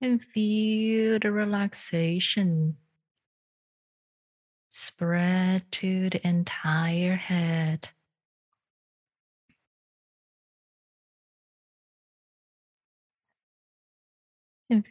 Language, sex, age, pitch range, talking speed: English, female, 20-39, 160-200 Hz, 40 wpm